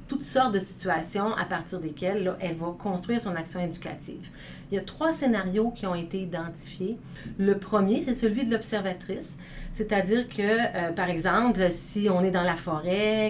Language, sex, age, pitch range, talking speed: French, female, 40-59, 180-225 Hz, 180 wpm